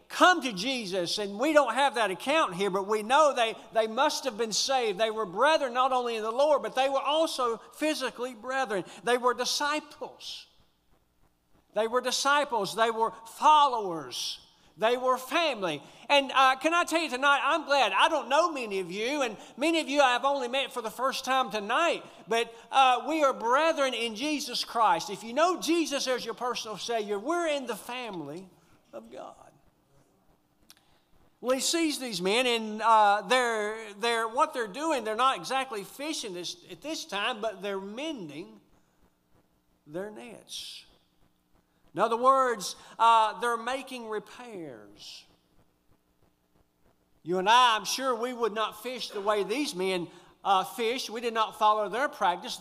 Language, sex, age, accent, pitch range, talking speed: English, male, 50-69, American, 200-270 Hz, 170 wpm